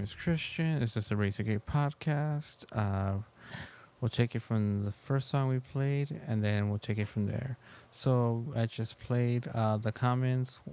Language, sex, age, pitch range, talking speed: English, male, 30-49, 110-130 Hz, 175 wpm